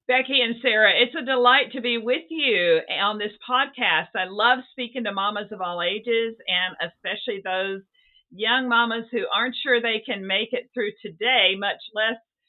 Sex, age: female, 50-69